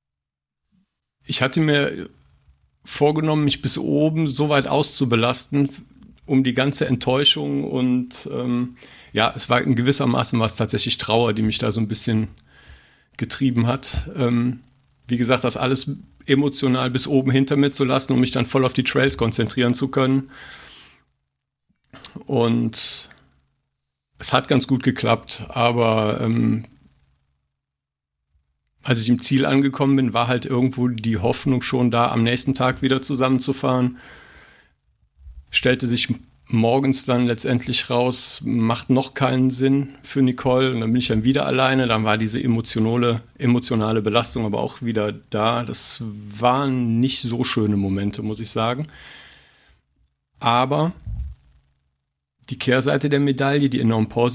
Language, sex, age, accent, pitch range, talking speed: German, male, 50-69, German, 110-135 Hz, 140 wpm